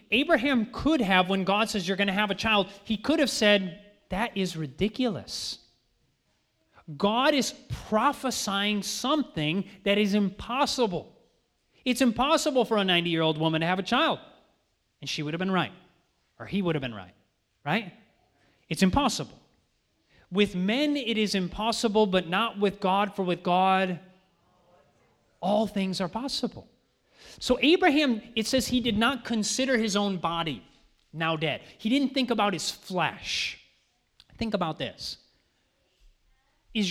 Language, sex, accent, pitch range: English, male, American, 175-235 Hz